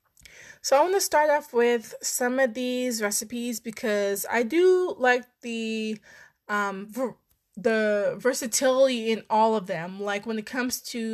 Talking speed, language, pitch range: 155 wpm, English, 205-245 Hz